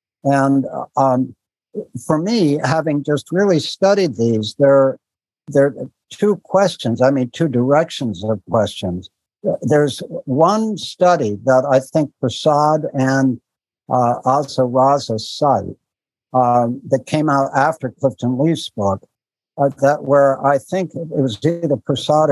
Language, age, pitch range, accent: English, 60-79, 125-150 Hz, American